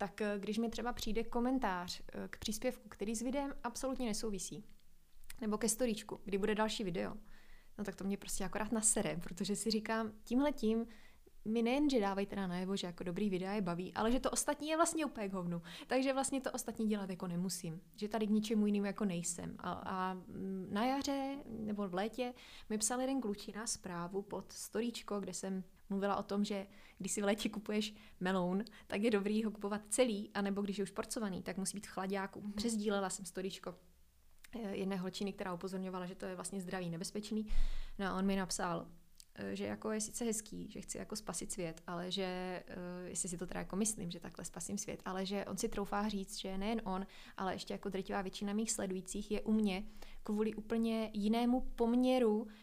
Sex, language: female, Czech